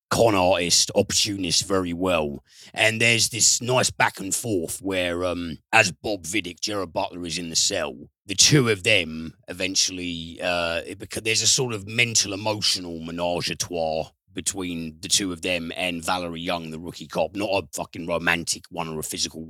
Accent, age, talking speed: British, 40-59, 180 wpm